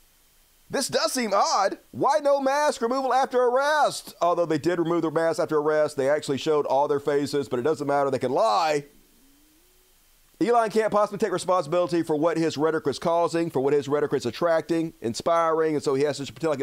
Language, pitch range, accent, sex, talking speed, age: English, 115-170 Hz, American, male, 200 wpm, 40-59